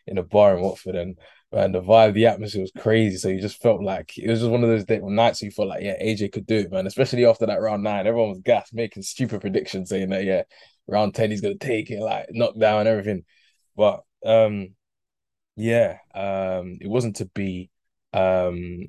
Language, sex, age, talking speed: English, male, 20-39, 220 wpm